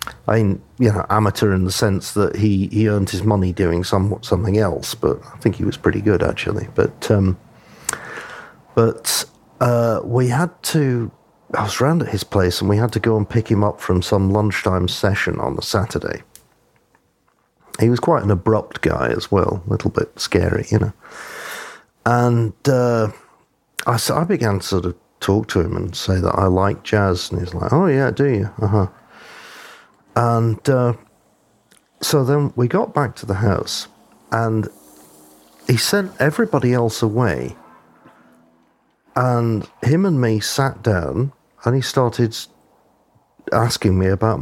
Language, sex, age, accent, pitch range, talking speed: English, male, 50-69, British, 100-125 Hz, 165 wpm